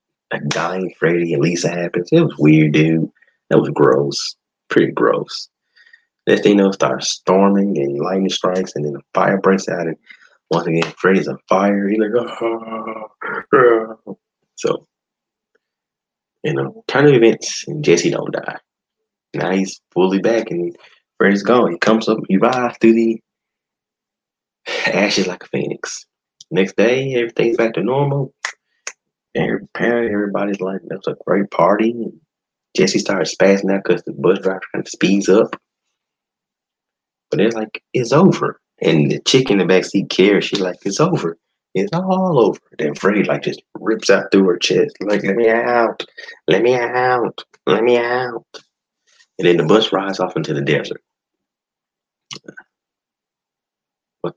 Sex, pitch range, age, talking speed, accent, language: male, 95-120 Hz, 20-39, 155 wpm, American, English